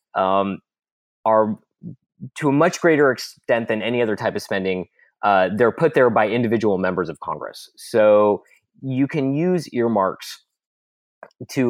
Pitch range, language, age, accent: 95-115 Hz, English, 30-49, American